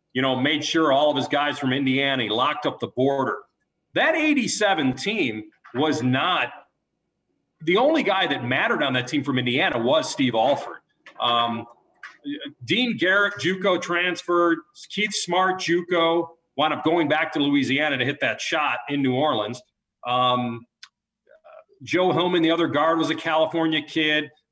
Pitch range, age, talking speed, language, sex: 130-175 Hz, 40-59, 155 wpm, English, male